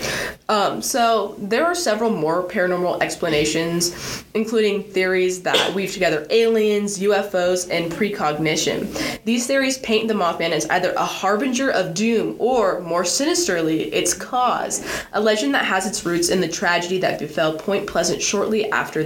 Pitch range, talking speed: 160-215 Hz, 150 wpm